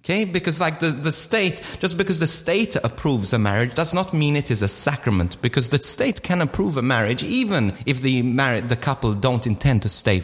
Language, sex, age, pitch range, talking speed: English, male, 30-49, 120-175 Hz, 215 wpm